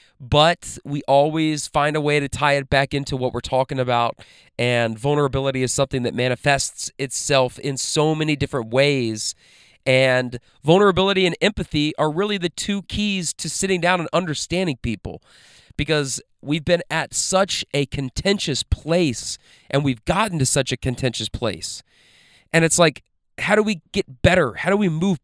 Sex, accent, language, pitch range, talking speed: male, American, English, 130-165 Hz, 165 wpm